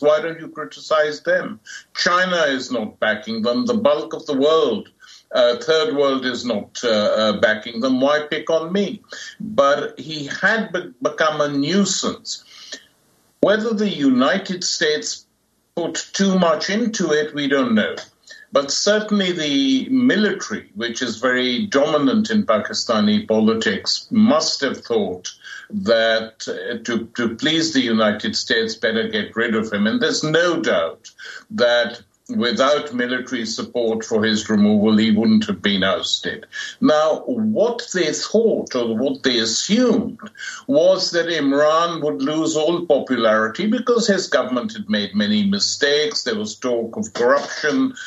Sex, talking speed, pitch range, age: male, 145 wpm, 135-220 Hz, 60-79